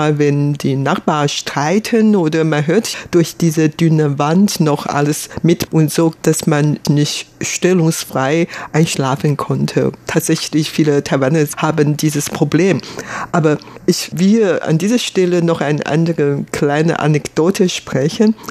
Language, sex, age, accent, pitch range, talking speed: German, female, 60-79, German, 150-185 Hz, 130 wpm